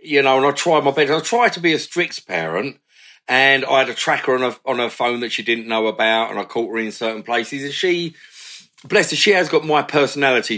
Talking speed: 255 wpm